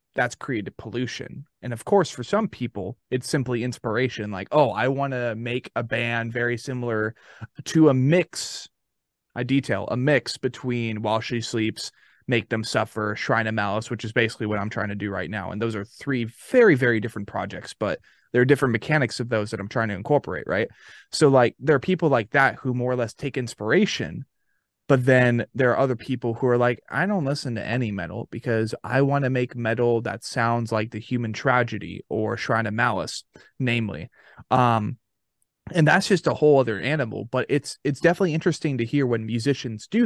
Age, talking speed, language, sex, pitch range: 20-39, 200 wpm, English, male, 110-140 Hz